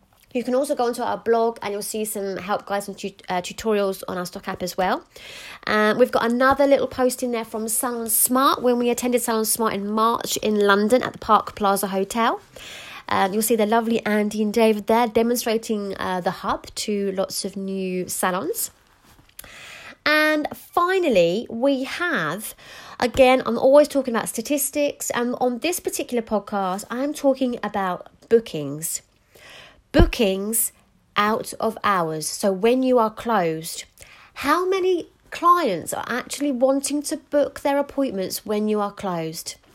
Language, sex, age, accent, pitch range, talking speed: English, female, 30-49, British, 195-265 Hz, 165 wpm